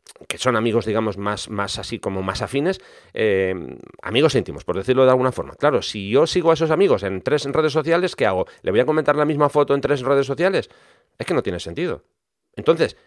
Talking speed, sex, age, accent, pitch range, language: 220 wpm, male, 40-59, Spanish, 105-155 Hz, English